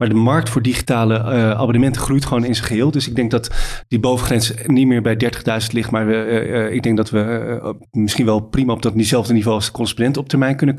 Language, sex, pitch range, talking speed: Dutch, male, 115-140 Hz, 245 wpm